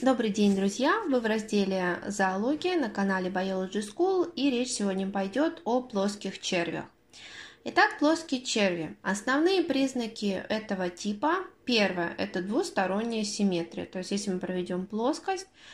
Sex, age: female, 20-39